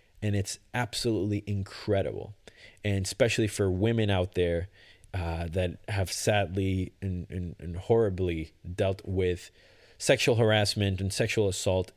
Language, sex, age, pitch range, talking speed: English, male, 20-39, 95-110 Hz, 125 wpm